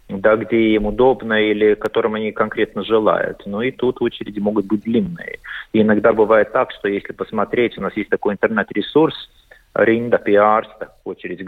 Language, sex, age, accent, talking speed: Russian, male, 30-49, native, 165 wpm